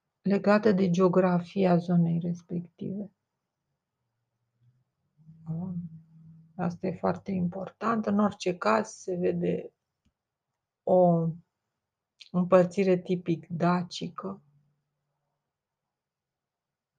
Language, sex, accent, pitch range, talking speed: Romanian, female, native, 170-185 Hz, 65 wpm